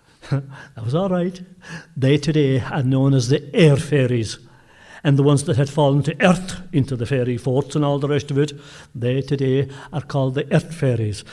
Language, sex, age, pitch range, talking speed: English, male, 60-79, 130-165 Hz, 195 wpm